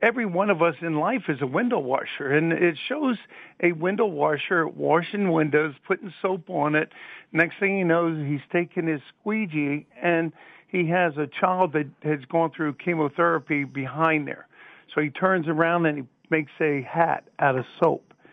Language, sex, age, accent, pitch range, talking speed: English, male, 50-69, American, 155-185 Hz, 175 wpm